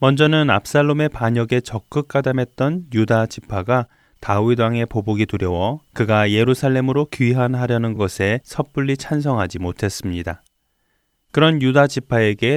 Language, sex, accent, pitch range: Korean, male, native, 100-135 Hz